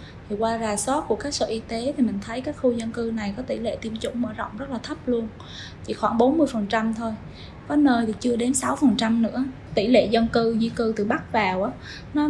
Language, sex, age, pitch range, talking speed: Vietnamese, female, 20-39, 215-260 Hz, 265 wpm